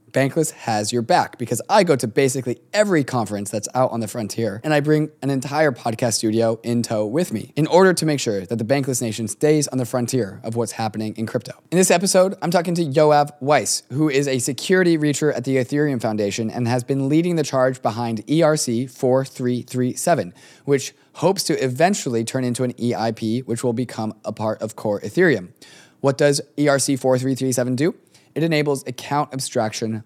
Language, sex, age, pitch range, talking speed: English, male, 20-39, 115-145 Hz, 190 wpm